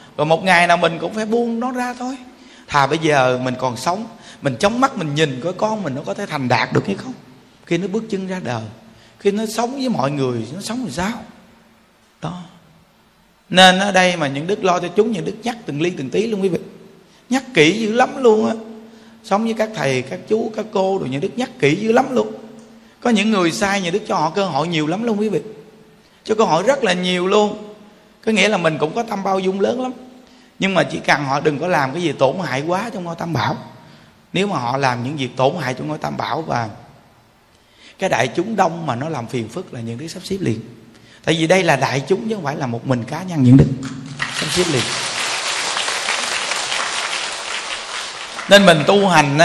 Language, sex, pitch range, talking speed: Vietnamese, male, 140-215 Hz, 235 wpm